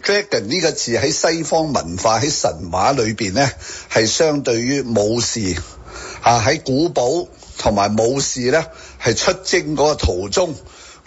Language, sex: Chinese, male